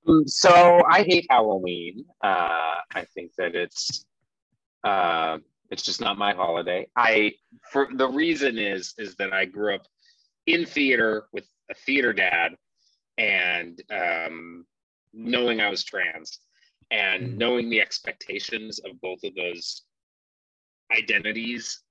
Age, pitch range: 30-49, 100-150 Hz